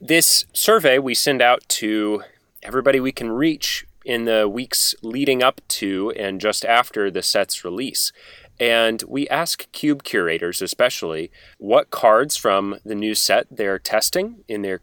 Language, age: English, 30-49